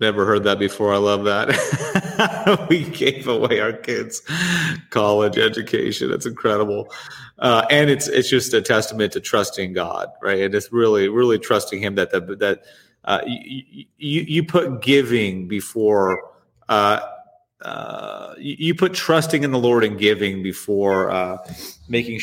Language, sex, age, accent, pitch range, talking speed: English, male, 30-49, American, 105-145 Hz, 155 wpm